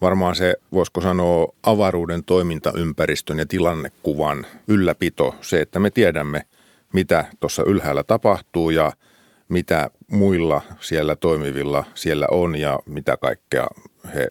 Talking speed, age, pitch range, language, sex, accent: 115 wpm, 50-69, 75-90 Hz, Finnish, male, native